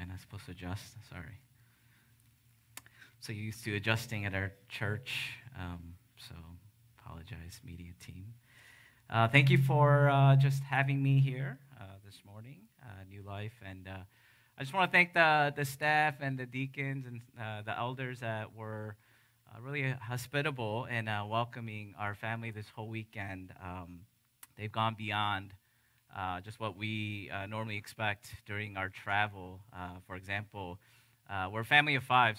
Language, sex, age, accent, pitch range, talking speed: English, male, 30-49, American, 105-130 Hz, 160 wpm